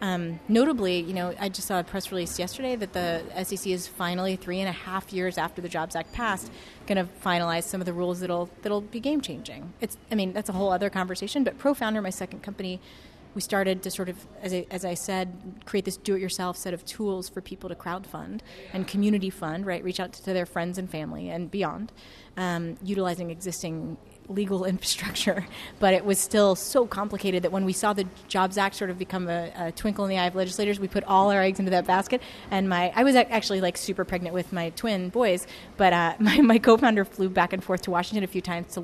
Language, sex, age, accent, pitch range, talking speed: English, female, 30-49, American, 180-215 Hz, 230 wpm